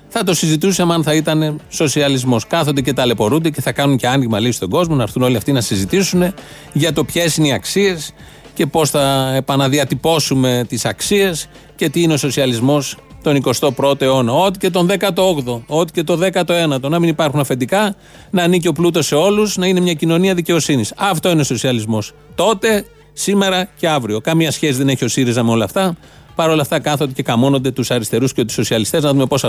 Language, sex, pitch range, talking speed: Greek, male, 135-180 Hz, 200 wpm